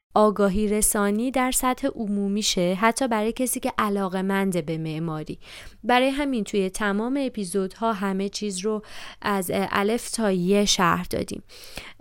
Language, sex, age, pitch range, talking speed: Persian, female, 20-39, 195-255 Hz, 145 wpm